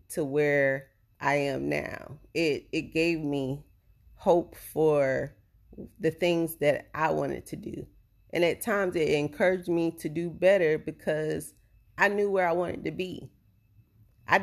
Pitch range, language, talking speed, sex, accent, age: 135-175 Hz, English, 150 wpm, female, American, 30-49